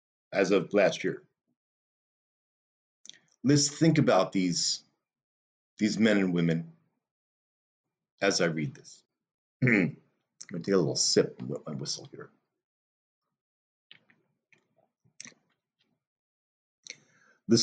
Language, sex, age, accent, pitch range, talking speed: English, male, 50-69, American, 80-110 Hz, 90 wpm